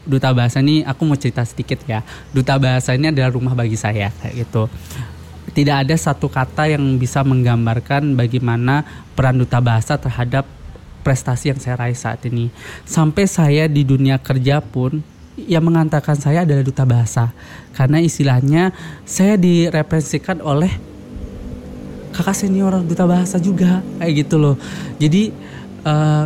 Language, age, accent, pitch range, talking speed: Indonesian, 20-39, native, 130-160 Hz, 140 wpm